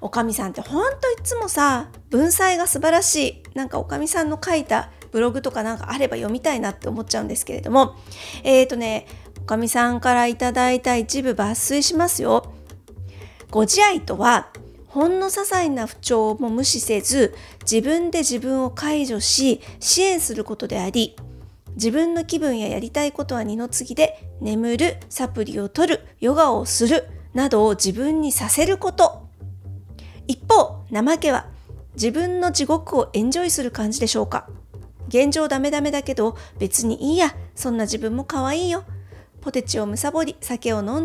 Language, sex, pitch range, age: Japanese, female, 210-300 Hz, 40-59